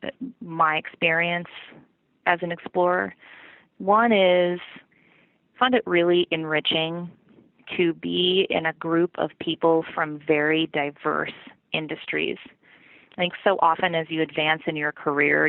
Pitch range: 155-185 Hz